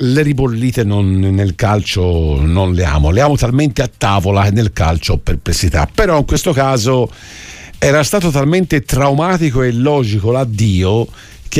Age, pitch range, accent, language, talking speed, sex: 50-69, 95-140 Hz, native, Italian, 155 wpm, male